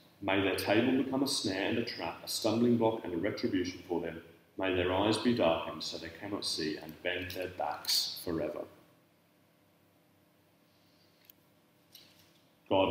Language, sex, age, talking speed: English, male, 30-49, 145 wpm